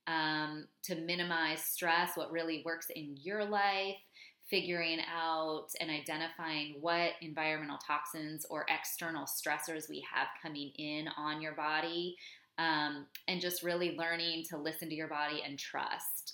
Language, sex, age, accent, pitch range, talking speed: English, female, 20-39, American, 150-175 Hz, 145 wpm